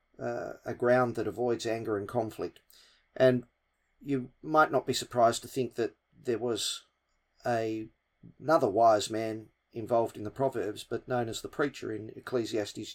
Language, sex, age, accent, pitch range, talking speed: English, male, 40-59, Australian, 115-145 Hz, 160 wpm